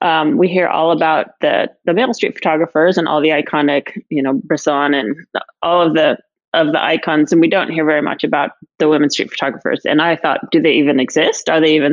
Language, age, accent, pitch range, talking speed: English, 30-49, American, 160-215 Hz, 225 wpm